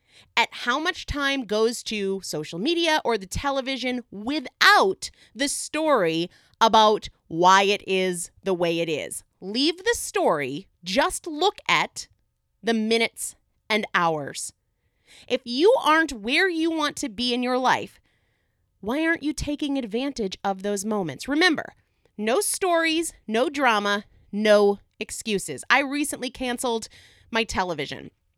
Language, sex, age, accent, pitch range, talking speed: English, female, 30-49, American, 205-310 Hz, 135 wpm